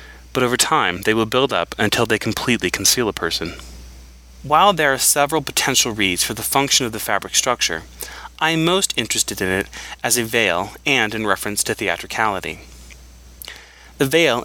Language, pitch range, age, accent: English, 90-125 Hz, 20-39, American